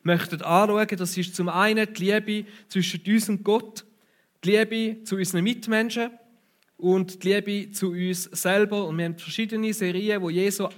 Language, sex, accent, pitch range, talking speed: German, male, German, 170-205 Hz, 165 wpm